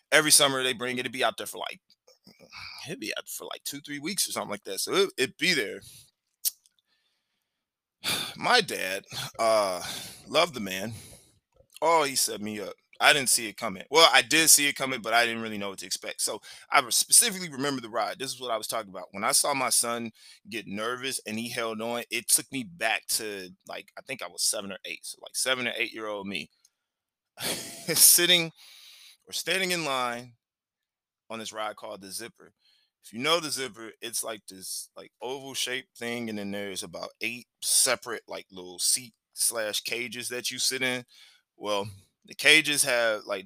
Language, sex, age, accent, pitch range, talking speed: English, male, 20-39, American, 105-140 Hz, 195 wpm